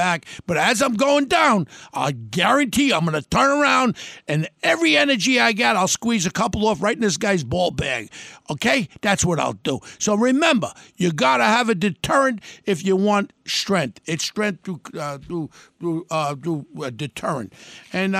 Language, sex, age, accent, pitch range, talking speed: English, male, 60-79, American, 160-205 Hz, 165 wpm